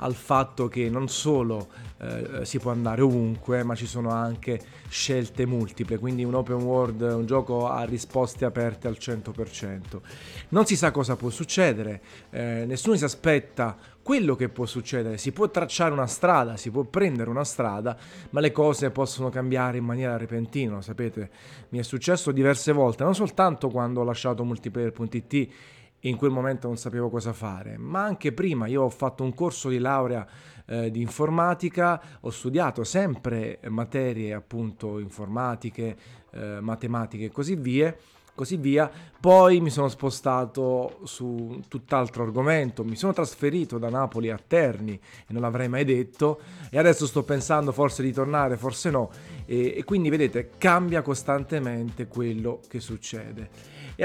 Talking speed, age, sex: 160 wpm, 30-49, male